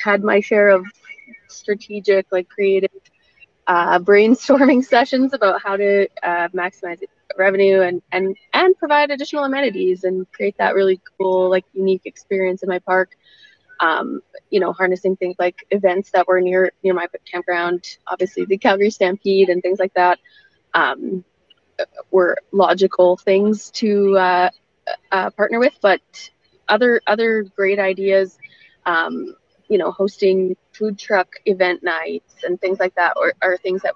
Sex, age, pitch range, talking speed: female, 20-39, 185-230 Hz, 150 wpm